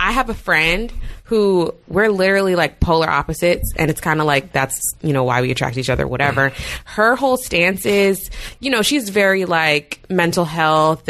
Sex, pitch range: female, 150-195 Hz